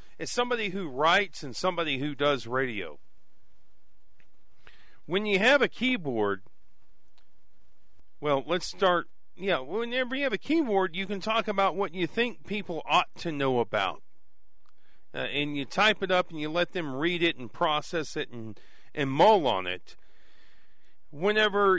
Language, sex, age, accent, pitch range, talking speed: English, male, 40-59, American, 130-185 Hz, 155 wpm